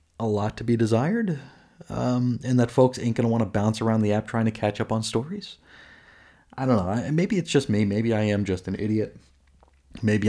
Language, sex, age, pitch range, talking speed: English, male, 30-49, 105-140 Hz, 225 wpm